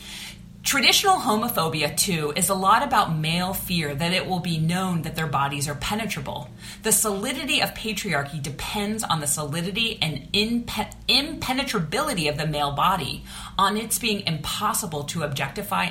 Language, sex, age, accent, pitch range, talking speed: English, female, 30-49, American, 155-210 Hz, 145 wpm